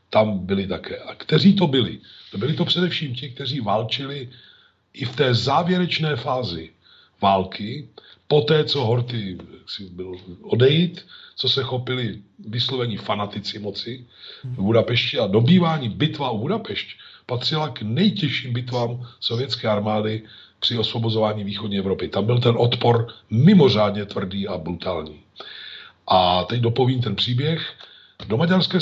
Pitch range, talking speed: 105-140 Hz, 135 wpm